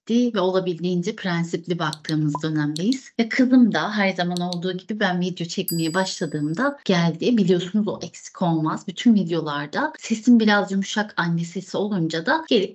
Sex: female